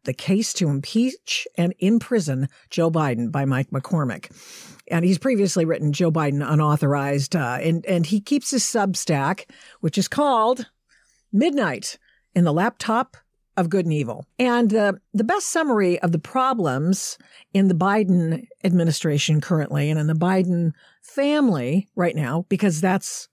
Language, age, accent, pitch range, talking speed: English, 50-69, American, 165-235 Hz, 150 wpm